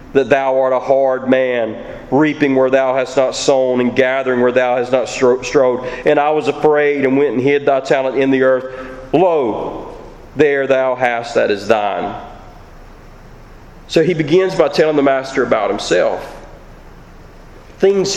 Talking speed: 160 wpm